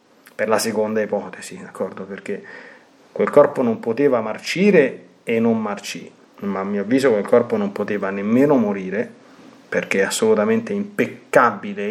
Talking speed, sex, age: 140 wpm, male, 30-49